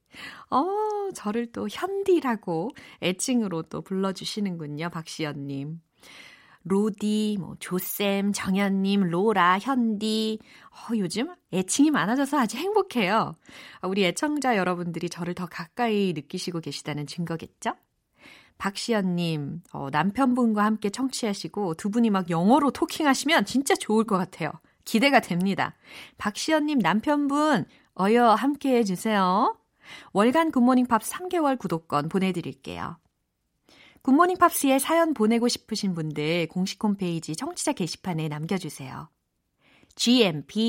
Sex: female